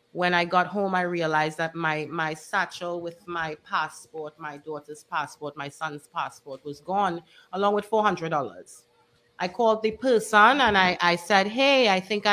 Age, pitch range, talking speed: 30-49, 160-210 Hz, 170 wpm